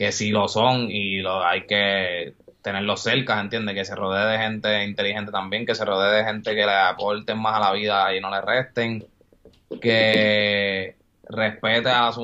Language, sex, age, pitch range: Spanish, male, 20-39, 100-120 Hz